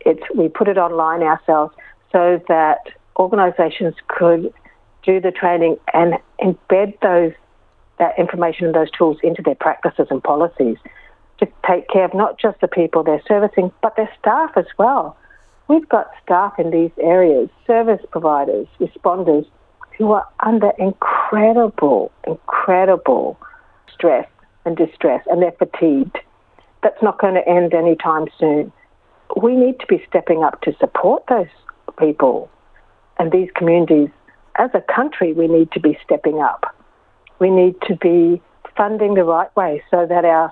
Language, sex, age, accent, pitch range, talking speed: English, female, 60-79, Australian, 165-190 Hz, 150 wpm